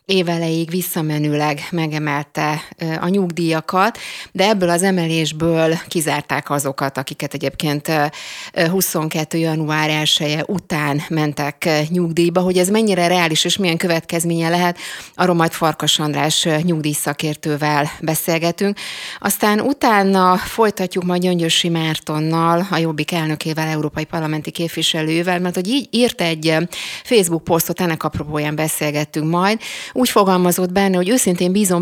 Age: 30-49